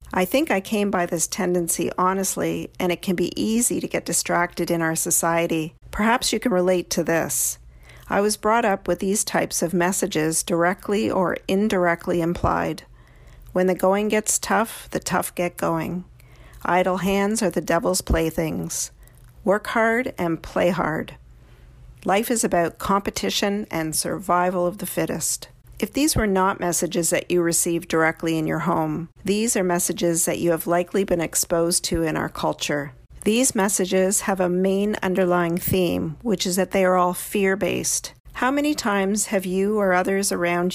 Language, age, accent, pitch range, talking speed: English, 50-69, American, 170-195 Hz, 170 wpm